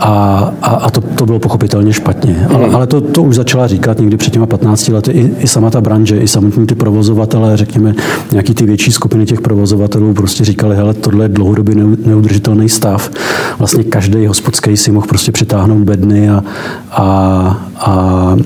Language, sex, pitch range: Czech, male, 105-120 Hz